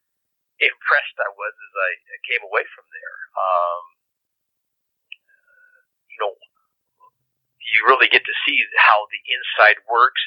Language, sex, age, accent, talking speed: English, male, 50-69, American, 125 wpm